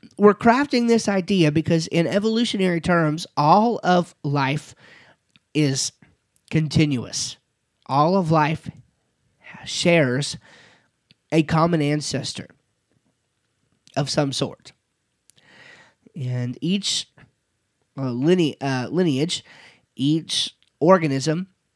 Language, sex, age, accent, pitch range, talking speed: English, male, 30-49, American, 140-175 Hz, 85 wpm